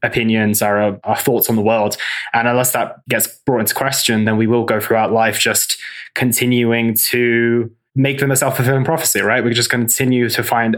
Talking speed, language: 190 wpm, English